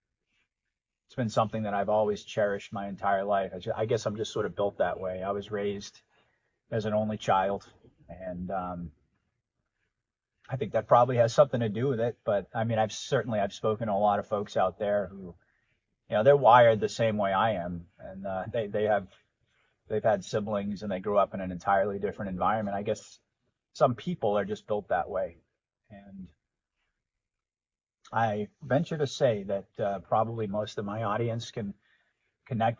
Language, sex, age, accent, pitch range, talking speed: English, male, 30-49, American, 100-115 Hz, 190 wpm